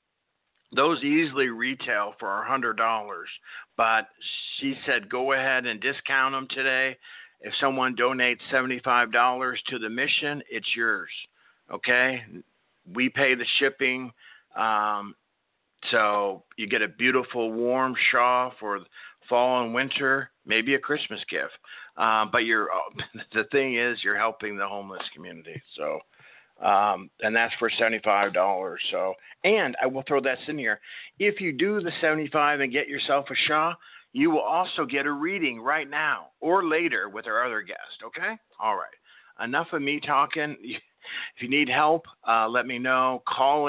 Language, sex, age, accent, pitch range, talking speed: English, male, 50-69, American, 115-140 Hz, 150 wpm